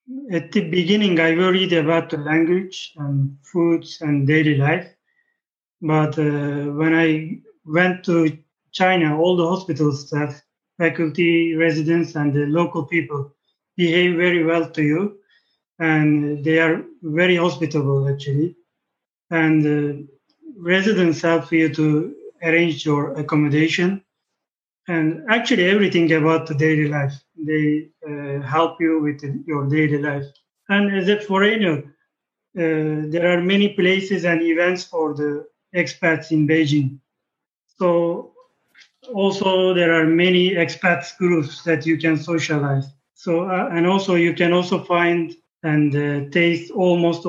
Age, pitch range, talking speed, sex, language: 30-49, 150-180 Hz, 130 wpm, male, English